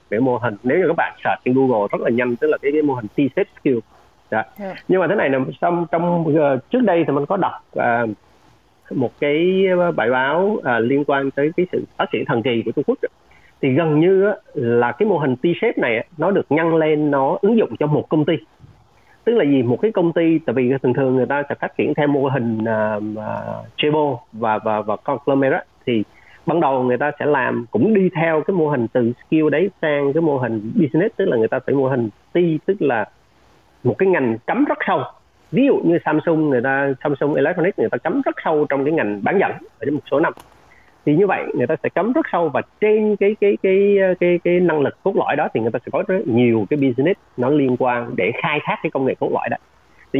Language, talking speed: Vietnamese, 245 wpm